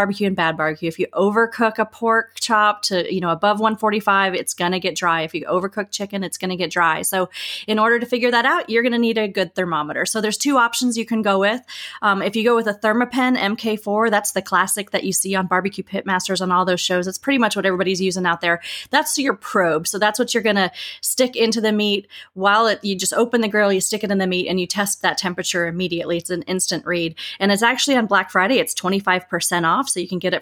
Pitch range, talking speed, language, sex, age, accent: 180-225 Hz, 255 wpm, English, female, 30-49, American